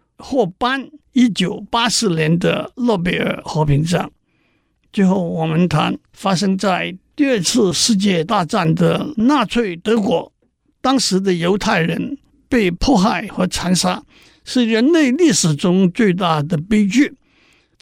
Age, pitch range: 50-69, 175-240 Hz